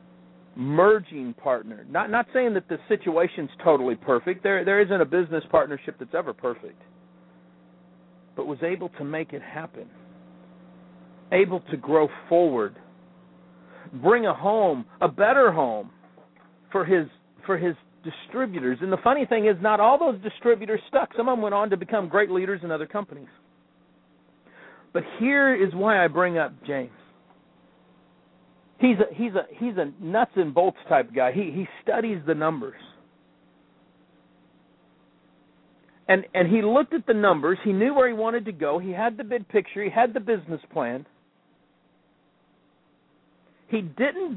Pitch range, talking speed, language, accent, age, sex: 135-215 Hz, 155 wpm, English, American, 50-69, male